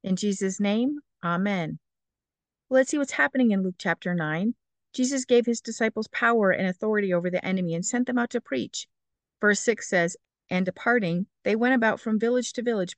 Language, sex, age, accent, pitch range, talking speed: English, female, 50-69, American, 185-235 Hz, 185 wpm